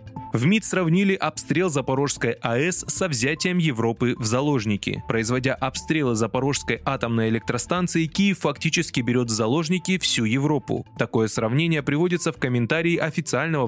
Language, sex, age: Russian, male, 20-39